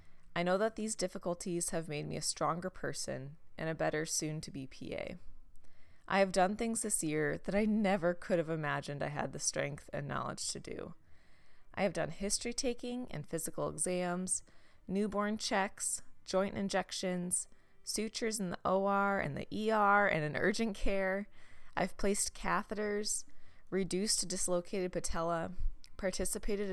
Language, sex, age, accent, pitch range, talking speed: English, female, 20-39, American, 160-195 Hz, 155 wpm